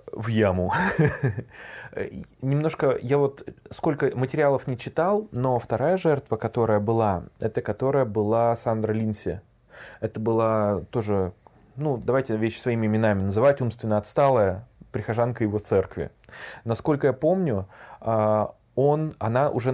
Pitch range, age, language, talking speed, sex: 110-130 Hz, 20-39, Russian, 120 wpm, male